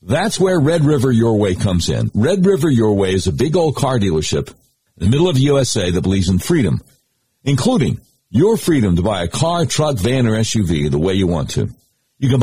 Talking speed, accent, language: 220 wpm, American, English